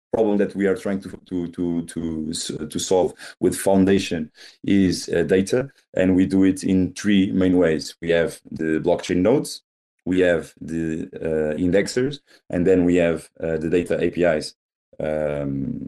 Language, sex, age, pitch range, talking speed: English, male, 30-49, 85-95 Hz, 165 wpm